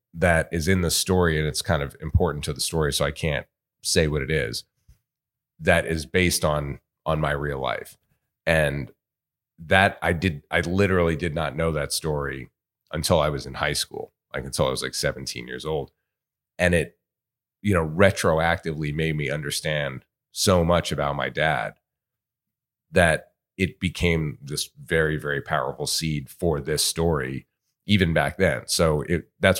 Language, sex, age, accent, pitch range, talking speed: French, male, 30-49, American, 70-90 Hz, 170 wpm